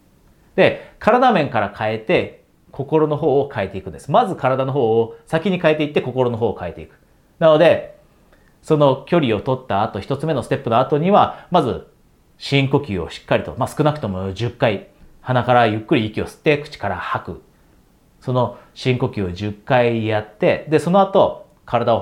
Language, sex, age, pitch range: Japanese, male, 40-59, 105-150 Hz